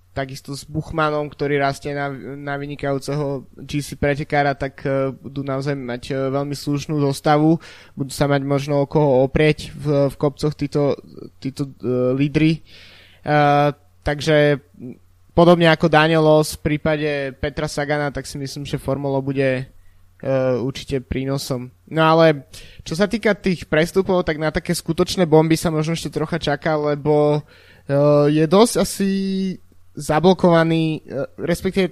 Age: 20-39